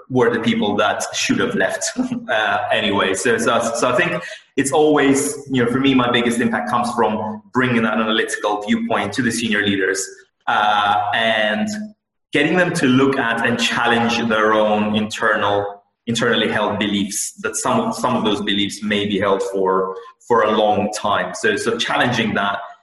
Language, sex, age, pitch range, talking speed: English, male, 30-49, 105-125 Hz, 175 wpm